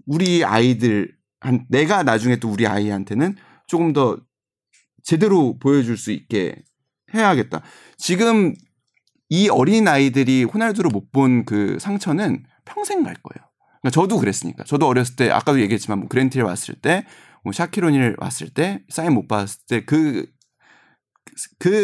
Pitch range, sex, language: 120-190 Hz, male, Korean